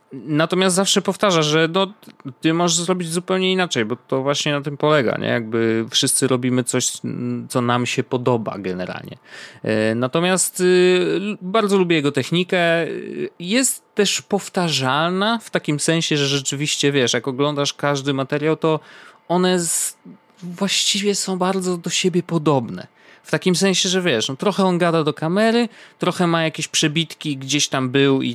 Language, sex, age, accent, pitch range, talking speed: Polish, male, 30-49, native, 130-185 Hz, 145 wpm